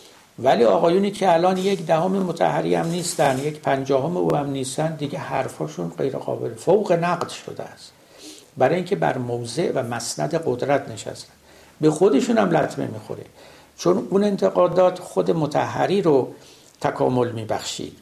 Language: Persian